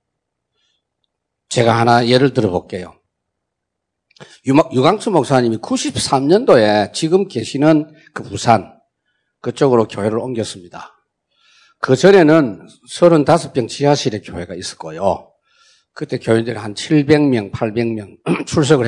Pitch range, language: 110-150 Hz, Korean